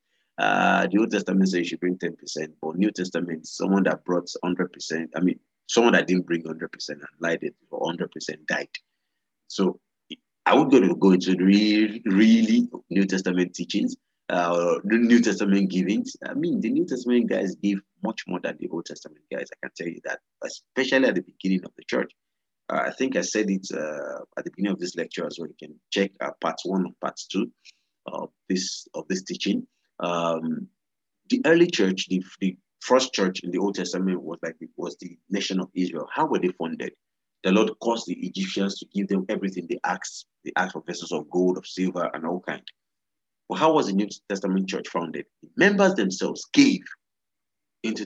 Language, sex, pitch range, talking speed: English, male, 90-125 Hz, 195 wpm